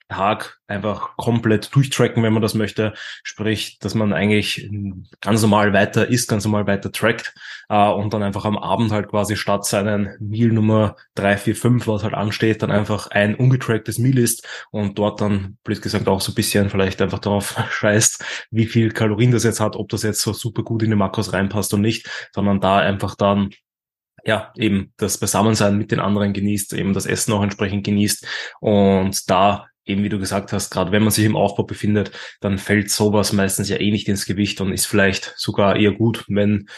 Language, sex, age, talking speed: German, male, 20-39, 200 wpm